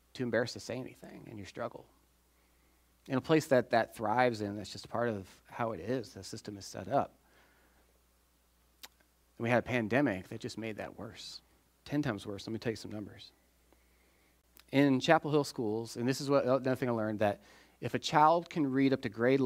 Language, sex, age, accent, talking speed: English, male, 30-49, American, 200 wpm